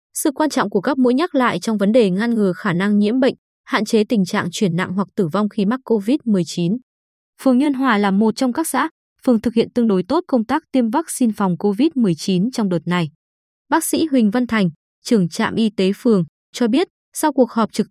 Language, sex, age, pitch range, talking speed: Vietnamese, female, 20-39, 195-255 Hz, 230 wpm